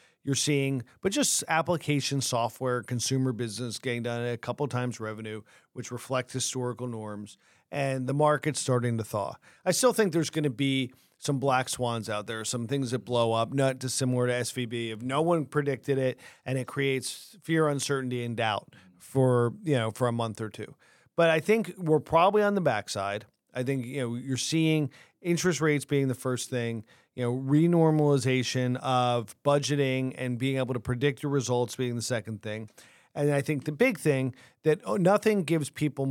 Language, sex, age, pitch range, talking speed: English, male, 40-59, 120-145 Hz, 185 wpm